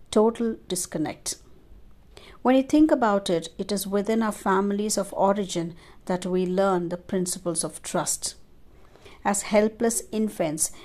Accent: Indian